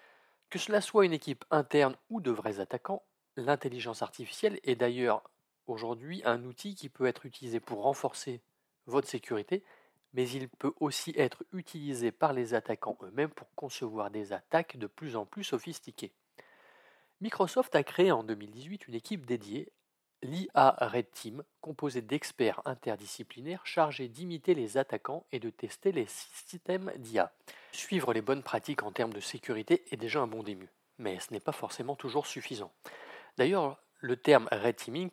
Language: French